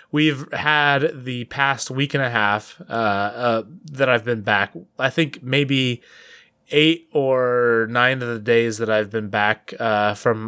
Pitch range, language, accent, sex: 115-150 Hz, English, American, male